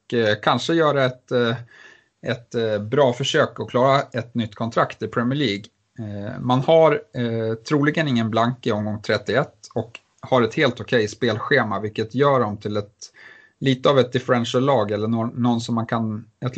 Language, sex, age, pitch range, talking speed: Swedish, male, 30-49, 105-125 Hz, 165 wpm